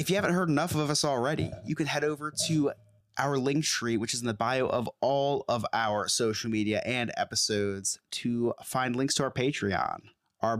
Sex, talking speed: male, 205 wpm